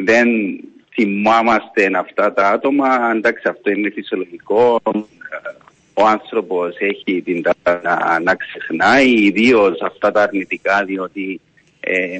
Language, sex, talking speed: Greek, male, 120 wpm